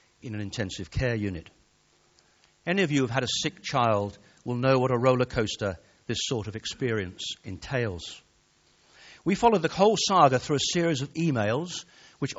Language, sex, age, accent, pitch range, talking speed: English, male, 50-69, British, 110-160 Hz, 175 wpm